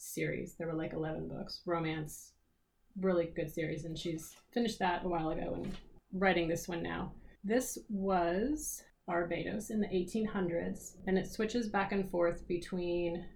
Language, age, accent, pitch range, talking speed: English, 30-49, American, 165-200 Hz, 155 wpm